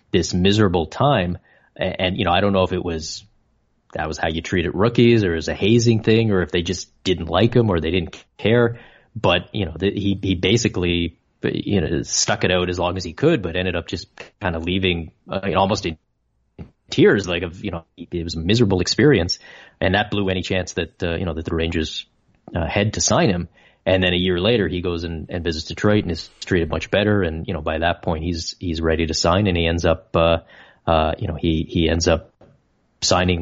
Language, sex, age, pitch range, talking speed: English, male, 30-49, 85-100 Hz, 235 wpm